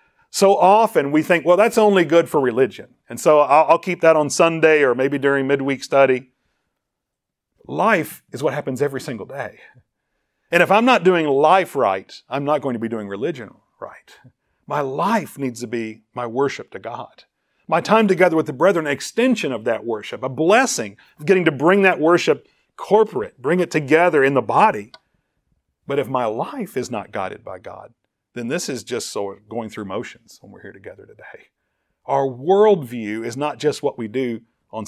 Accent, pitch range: American, 115-170 Hz